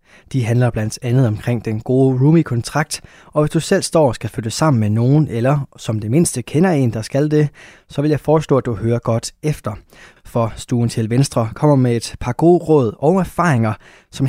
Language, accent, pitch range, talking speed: Danish, native, 115-145 Hz, 210 wpm